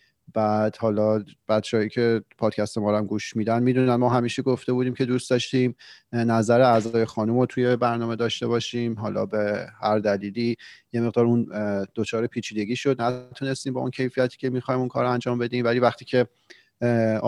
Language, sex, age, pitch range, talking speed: Persian, male, 30-49, 110-125 Hz, 170 wpm